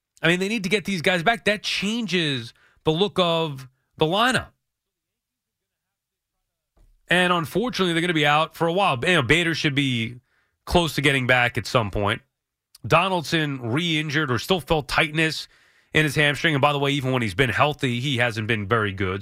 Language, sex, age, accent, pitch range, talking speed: English, male, 30-49, American, 140-190 Hz, 185 wpm